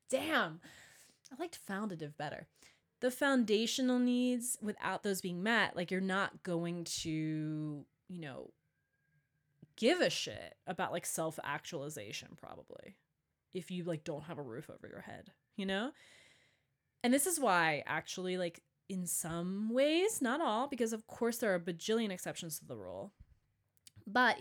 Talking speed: 150 wpm